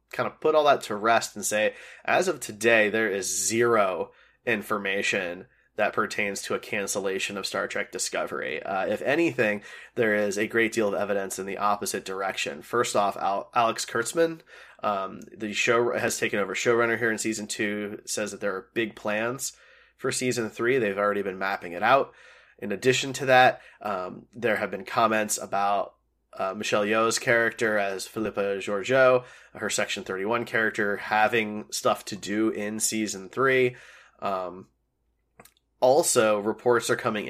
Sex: male